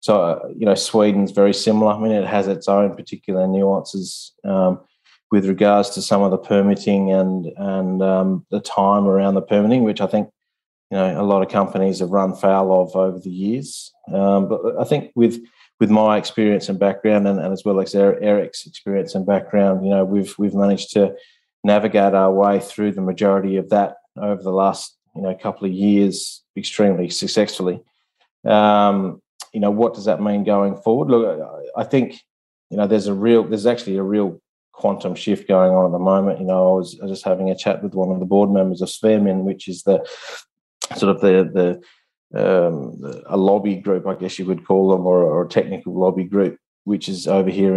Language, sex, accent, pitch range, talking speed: English, male, Australian, 95-100 Hz, 200 wpm